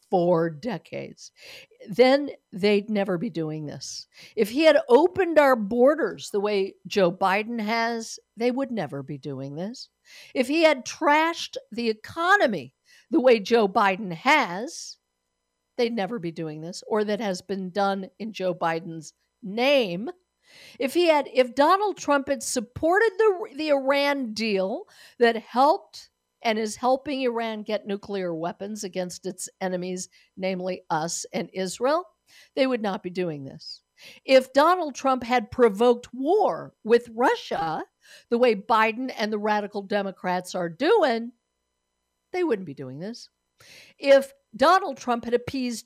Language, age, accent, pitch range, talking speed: English, 60-79, American, 185-270 Hz, 145 wpm